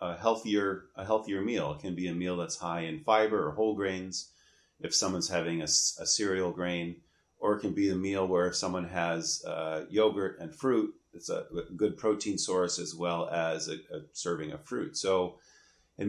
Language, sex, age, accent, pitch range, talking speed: English, male, 30-49, American, 85-100 Hz, 195 wpm